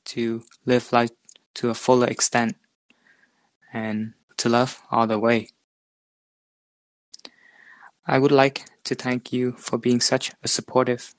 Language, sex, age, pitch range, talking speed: English, male, 20-39, 115-125 Hz, 130 wpm